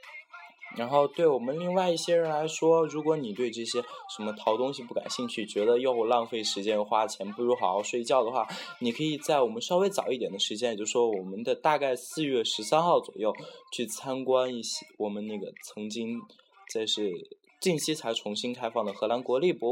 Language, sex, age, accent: Chinese, male, 20-39, native